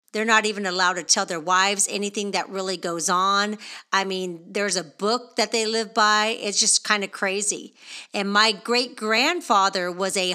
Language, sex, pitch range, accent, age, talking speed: English, female, 190-225 Hz, American, 40-59, 185 wpm